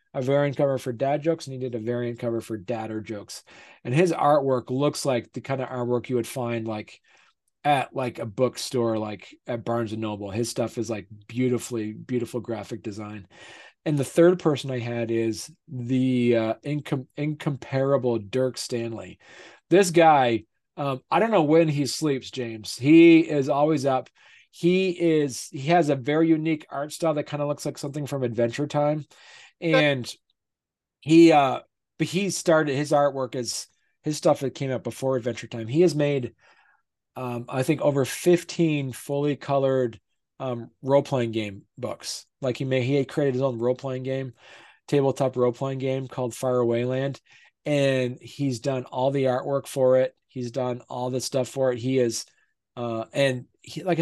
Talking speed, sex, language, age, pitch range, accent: 180 wpm, male, English, 40-59, 120-145 Hz, American